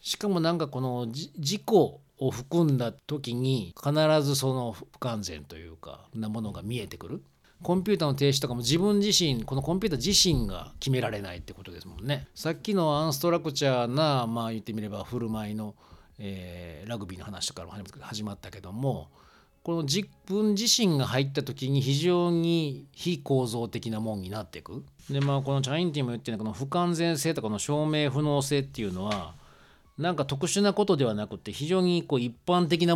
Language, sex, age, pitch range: Japanese, male, 40-59, 105-155 Hz